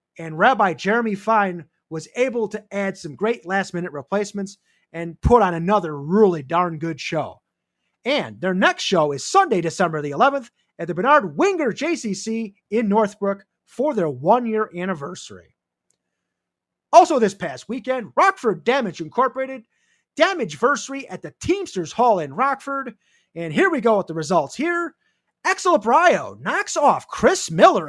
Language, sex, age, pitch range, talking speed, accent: English, male, 30-49, 185-295 Hz, 145 wpm, American